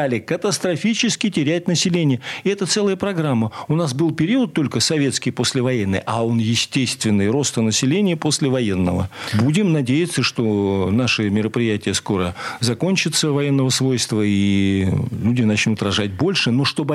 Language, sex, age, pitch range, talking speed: Russian, male, 40-59, 125-185 Hz, 125 wpm